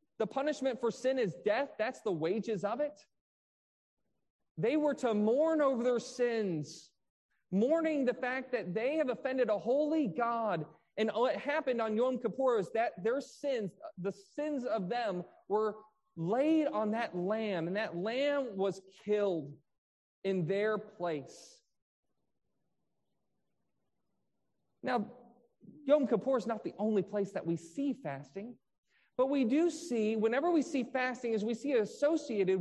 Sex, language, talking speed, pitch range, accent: male, English, 145 wpm, 195-260 Hz, American